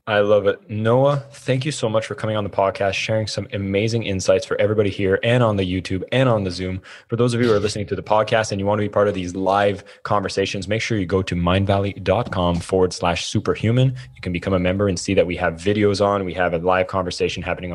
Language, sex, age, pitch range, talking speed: English, male, 20-39, 95-110 Hz, 250 wpm